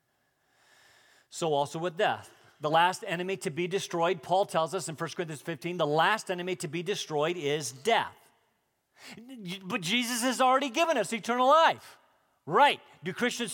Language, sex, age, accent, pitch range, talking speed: French, male, 50-69, American, 155-230 Hz, 160 wpm